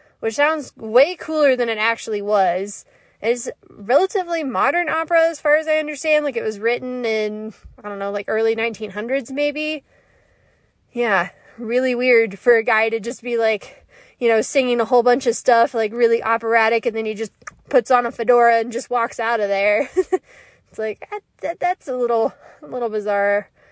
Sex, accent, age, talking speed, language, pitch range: female, American, 20-39, 190 wpm, English, 215-255 Hz